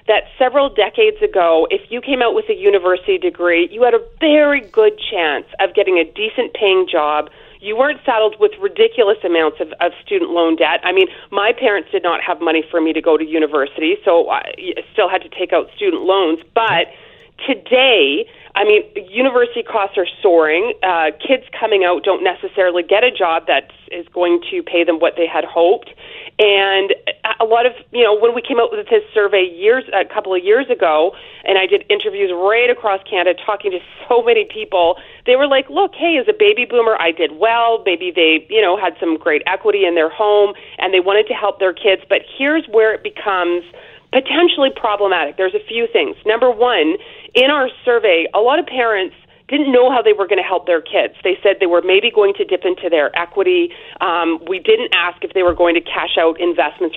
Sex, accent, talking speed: female, American, 210 wpm